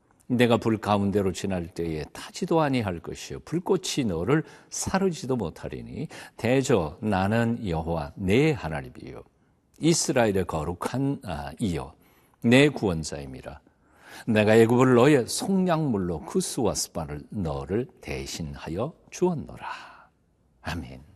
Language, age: Korean, 50-69